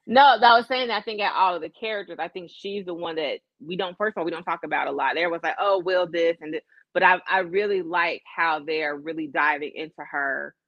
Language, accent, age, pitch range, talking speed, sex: English, American, 30-49, 165-230 Hz, 265 wpm, female